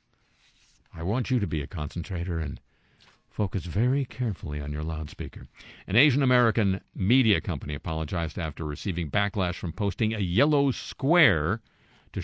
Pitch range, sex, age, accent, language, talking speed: 85-115 Hz, male, 50-69, American, English, 135 wpm